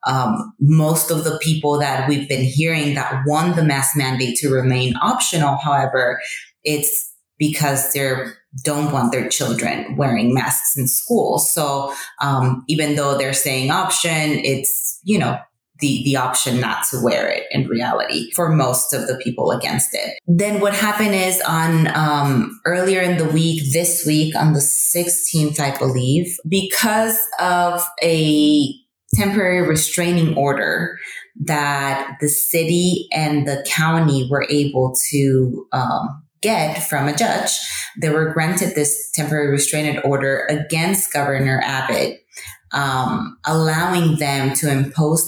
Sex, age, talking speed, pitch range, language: female, 20-39, 140 wpm, 140-165 Hz, English